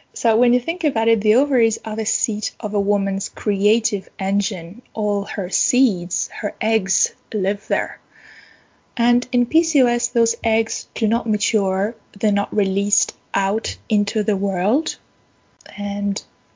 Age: 20-39